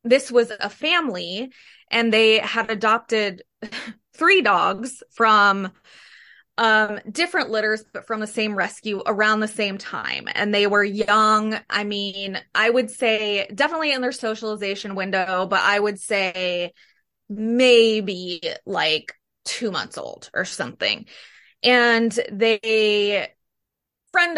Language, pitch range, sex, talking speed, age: English, 205-245 Hz, female, 125 wpm, 20-39